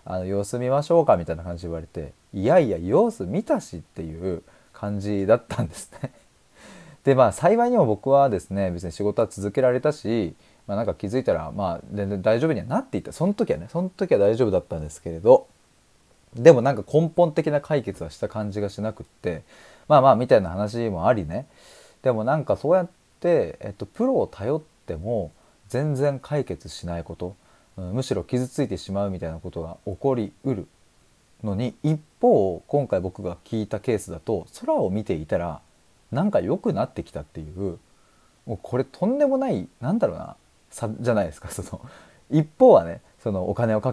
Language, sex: Japanese, male